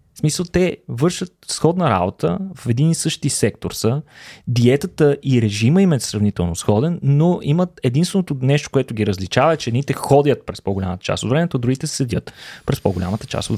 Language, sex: Bulgarian, male